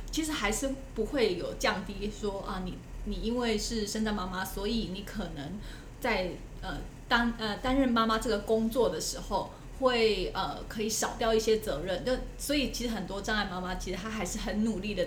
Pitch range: 190-230 Hz